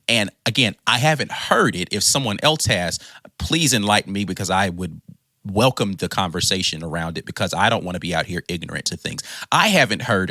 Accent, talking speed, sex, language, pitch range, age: American, 205 wpm, male, English, 95-120 Hz, 30-49